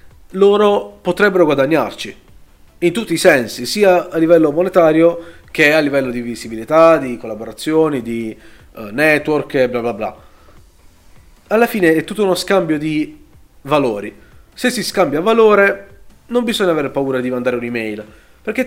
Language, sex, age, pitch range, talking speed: Italian, male, 30-49, 125-180 Hz, 145 wpm